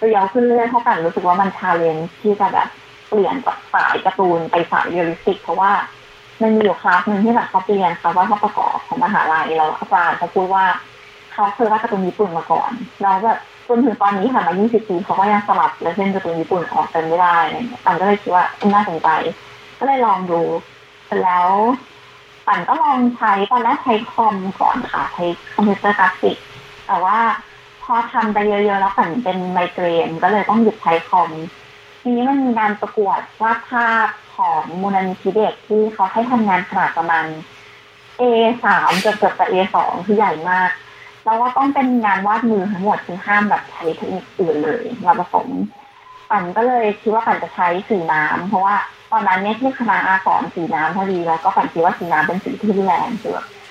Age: 20-39